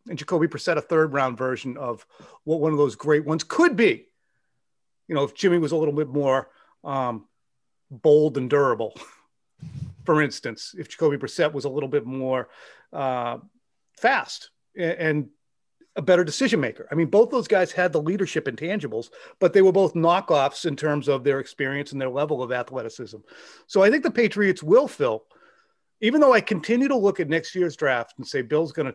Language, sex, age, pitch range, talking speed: English, male, 40-59, 140-195 Hz, 190 wpm